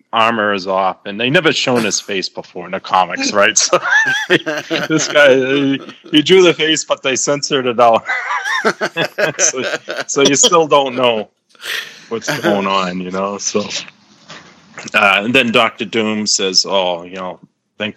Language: English